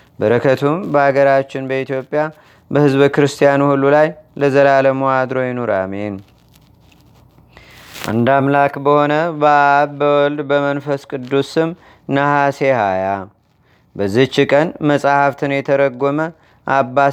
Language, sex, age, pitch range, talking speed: Amharic, male, 30-49, 135-145 Hz, 85 wpm